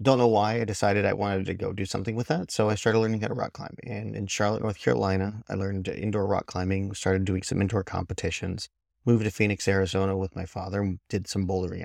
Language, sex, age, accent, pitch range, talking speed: English, male, 30-49, American, 95-120 Hz, 240 wpm